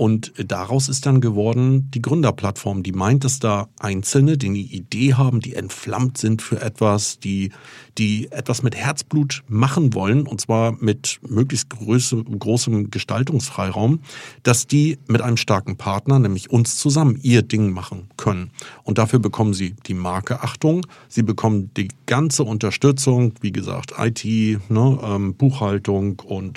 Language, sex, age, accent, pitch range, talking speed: German, male, 50-69, German, 100-130 Hz, 150 wpm